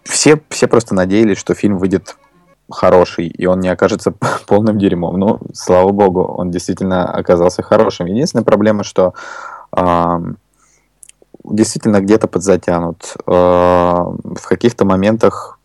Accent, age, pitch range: native, 20-39, 90-100 Hz